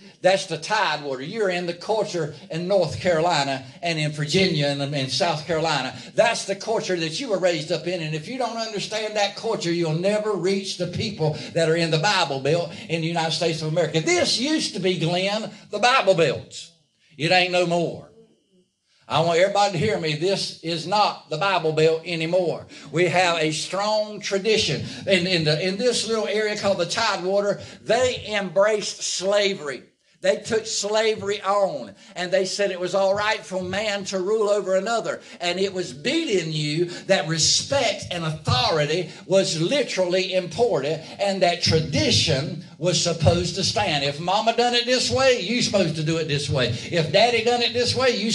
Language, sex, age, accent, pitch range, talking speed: English, male, 60-79, American, 160-210 Hz, 185 wpm